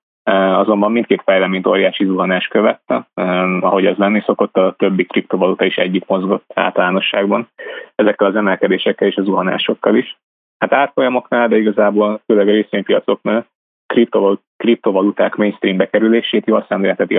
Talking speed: 125 wpm